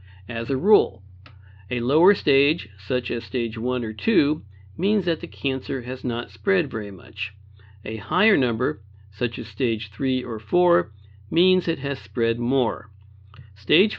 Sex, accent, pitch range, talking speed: male, American, 105-145 Hz, 155 wpm